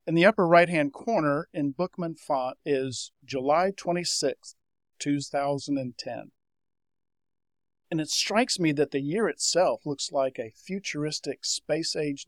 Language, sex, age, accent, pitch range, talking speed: English, male, 50-69, American, 135-165 Hz, 120 wpm